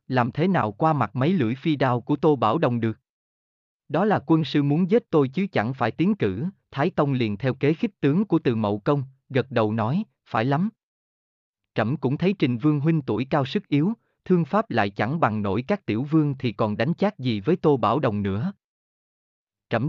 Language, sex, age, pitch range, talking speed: Vietnamese, male, 30-49, 110-160 Hz, 215 wpm